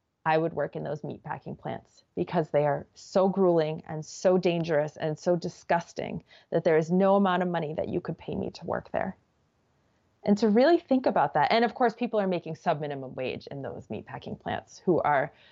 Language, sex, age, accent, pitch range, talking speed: English, female, 20-39, American, 175-205 Hz, 205 wpm